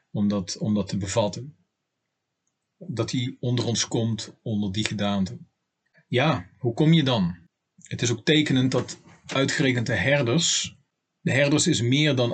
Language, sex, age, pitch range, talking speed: Dutch, male, 40-59, 105-130 Hz, 145 wpm